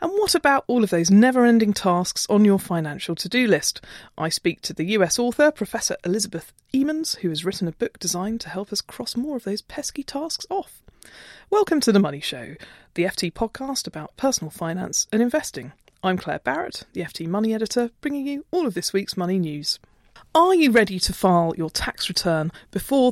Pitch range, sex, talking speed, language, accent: 175-245 Hz, female, 195 wpm, English, British